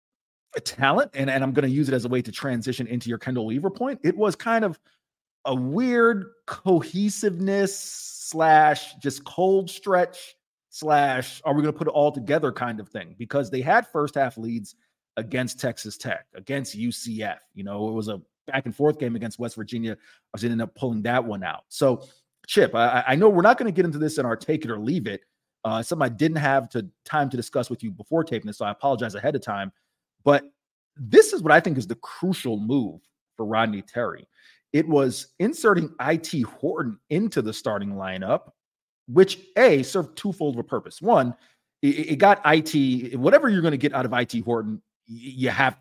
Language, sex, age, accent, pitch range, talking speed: English, male, 30-49, American, 120-165 Hz, 205 wpm